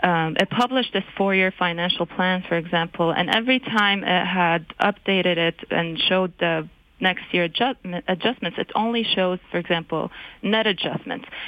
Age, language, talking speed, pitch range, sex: 30-49, English, 150 wpm, 175-210 Hz, female